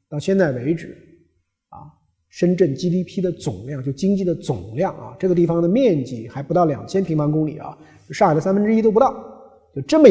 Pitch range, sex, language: 120-185 Hz, male, Chinese